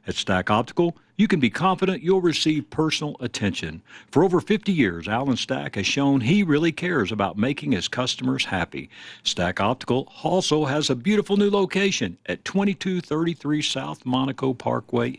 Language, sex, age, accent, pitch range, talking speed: English, male, 60-79, American, 125-180 Hz, 160 wpm